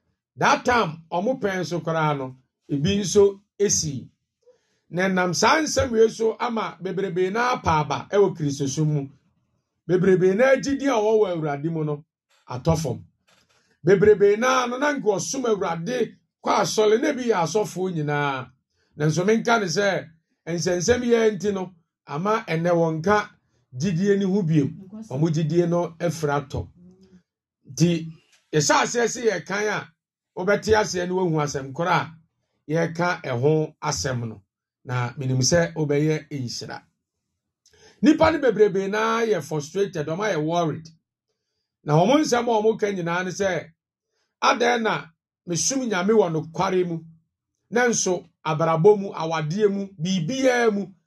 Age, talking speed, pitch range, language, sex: 50-69, 125 wpm, 155-215 Hz, English, male